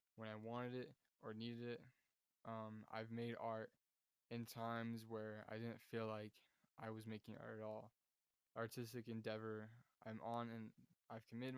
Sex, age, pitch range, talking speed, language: male, 10-29, 110-115 Hz, 160 wpm, English